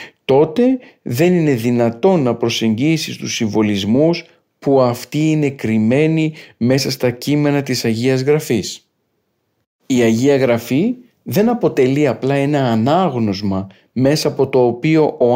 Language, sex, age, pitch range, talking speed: Greek, male, 50-69, 115-155 Hz, 120 wpm